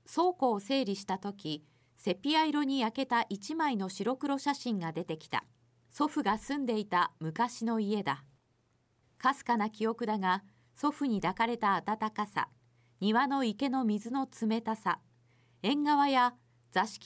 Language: Japanese